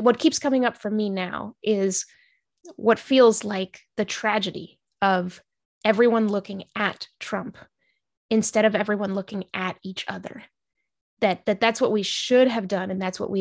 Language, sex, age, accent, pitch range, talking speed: English, female, 20-39, American, 195-245 Hz, 165 wpm